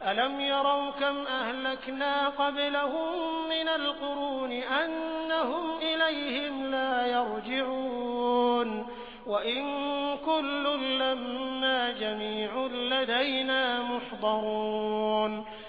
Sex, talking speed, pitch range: male, 65 wpm, 245-285 Hz